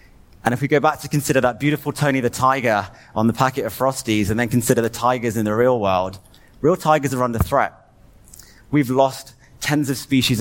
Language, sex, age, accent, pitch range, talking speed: Croatian, male, 30-49, British, 100-125 Hz, 210 wpm